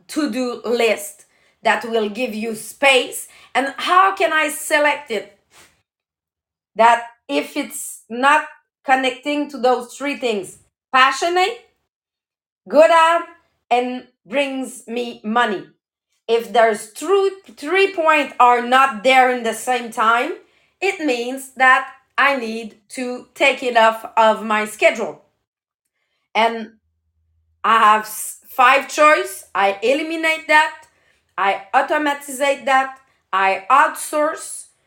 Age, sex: 30-49, female